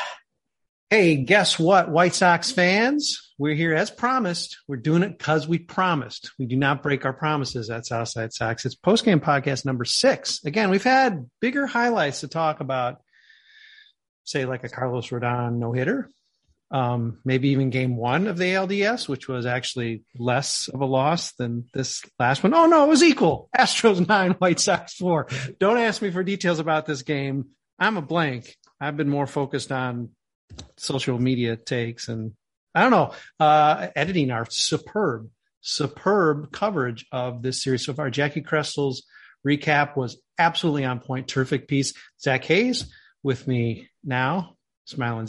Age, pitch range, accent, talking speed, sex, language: 40-59, 125-185 Hz, American, 165 wpm, male, English